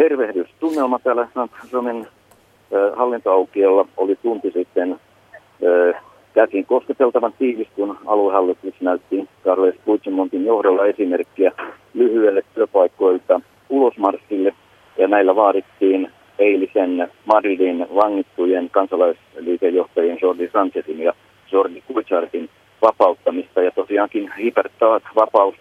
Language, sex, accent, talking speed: Finnish, male, native, 80 wpm